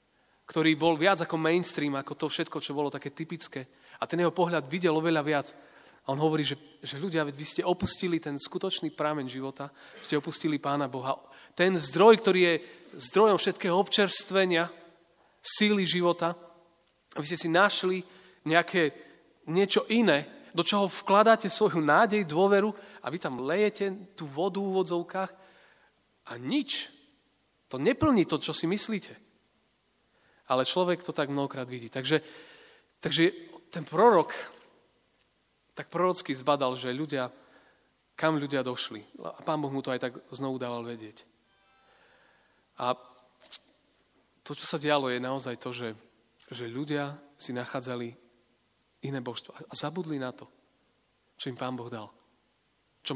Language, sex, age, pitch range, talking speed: Slovak, male, 30-49, 135-180 Hz, 145 wpm